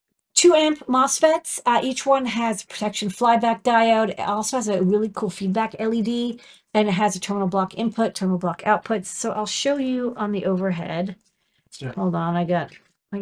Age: 40-59